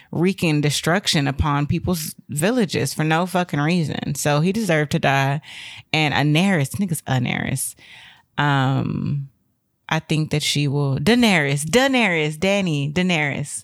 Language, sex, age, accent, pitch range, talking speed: English, female, 20-39, American, 135-170 Hz, 125 wpm